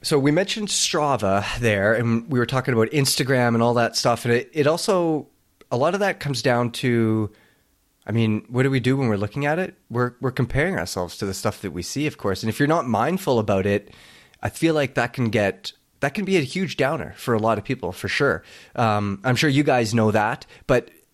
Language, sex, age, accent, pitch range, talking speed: English, male, 30-49, American, 110-150 Hz, 235 wpm